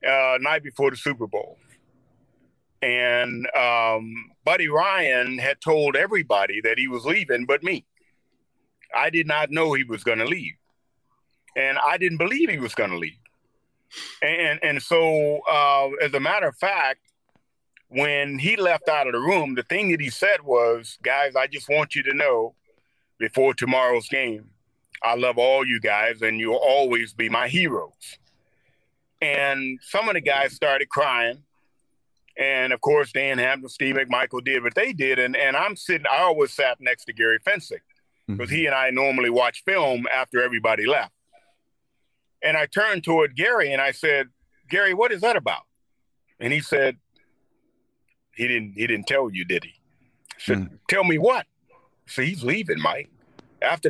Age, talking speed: 40-59, 170 wpm